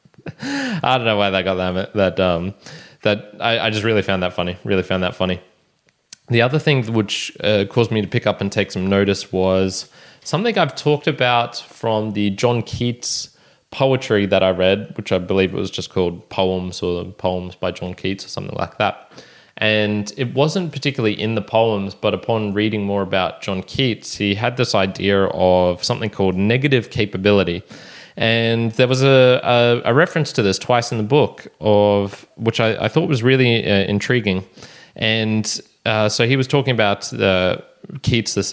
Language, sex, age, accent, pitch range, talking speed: English, male, 20-39, Australian, 95-120 Hz, 185 wpm